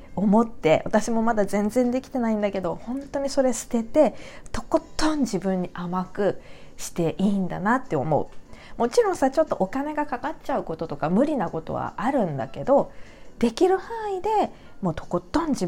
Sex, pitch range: female, 165-270 Hz